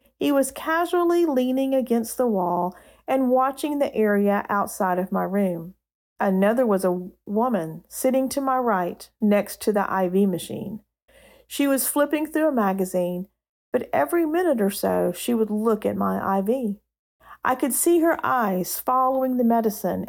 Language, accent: English, American